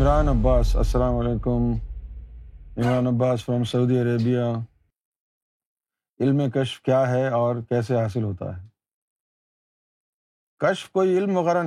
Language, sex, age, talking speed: Urdu, male, 50-69, 115 wpm